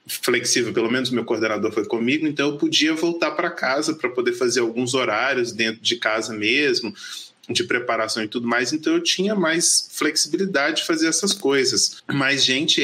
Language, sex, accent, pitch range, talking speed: Portuguese, male, Brazilian, 125-215 Hz, 175 wpm